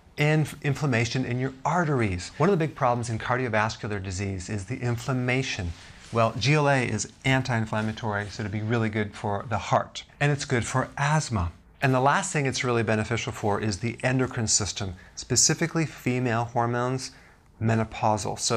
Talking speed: 160 wpm